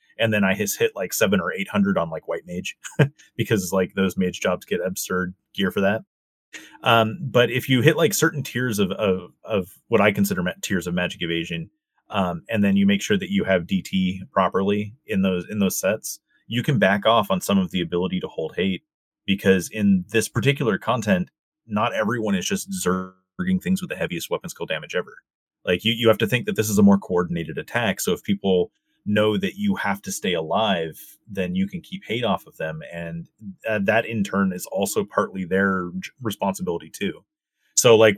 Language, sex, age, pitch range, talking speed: English, male, 30-49, 95-130 Hz, 205 wpm